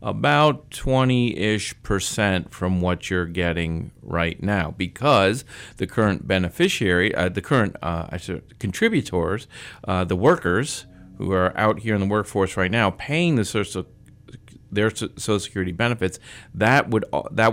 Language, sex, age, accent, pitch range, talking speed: English, male, 40-59, American, 95-120 Hz, 135 wpm